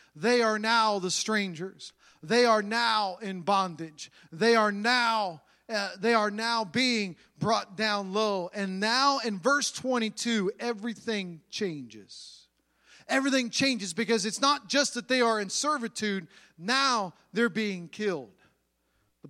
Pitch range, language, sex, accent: 195-265 Hz, English, male, American